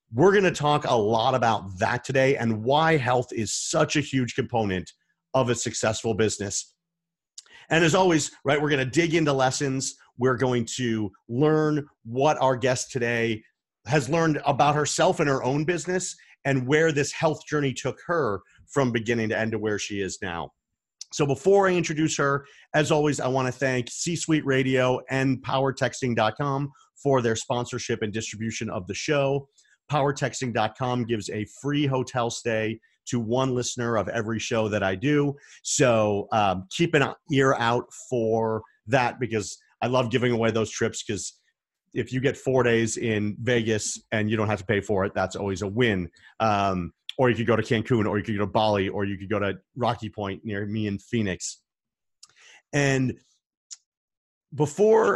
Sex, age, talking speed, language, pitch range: male, 40-59, 175 wpm, English, 110-140 Hz